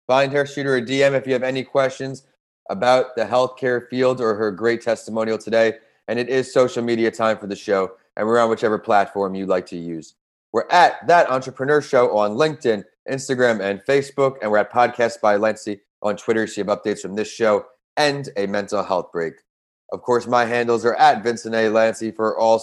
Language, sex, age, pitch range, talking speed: English, male, 30-49, 105-130 Hz, 210 wpm